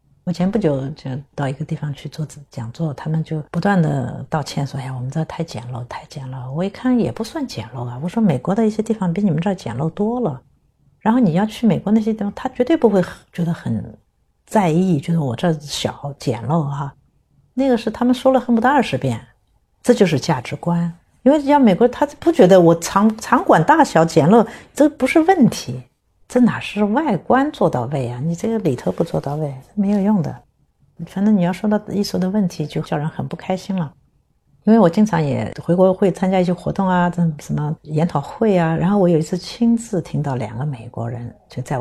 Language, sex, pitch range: Chinese, female, 140-210 Hz